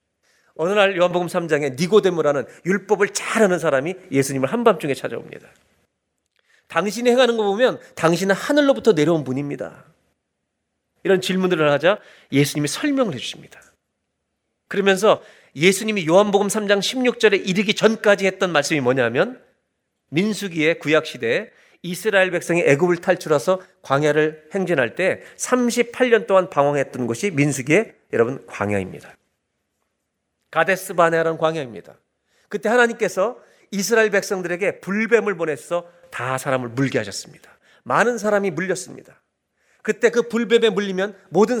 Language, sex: Korean, male